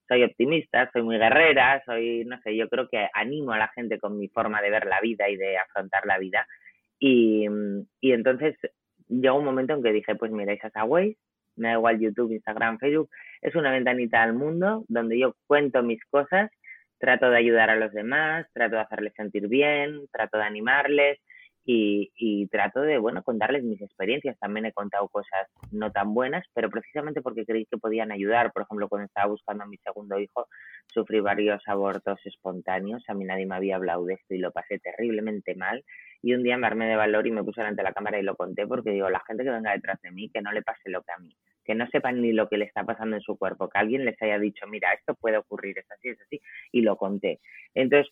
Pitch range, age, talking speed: 100-125 Hz, 20-39, 225 wpm